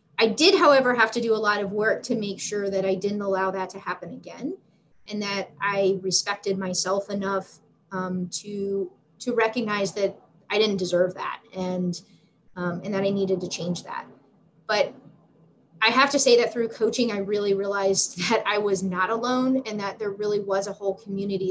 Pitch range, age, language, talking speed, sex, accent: 190-225 Hz, 20-39, English, 195 wpm, female, American